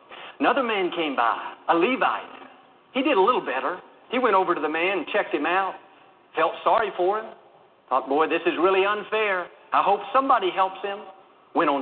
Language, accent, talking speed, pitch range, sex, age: English, American, 195 wpm, 170-255 Hz, male, 50-69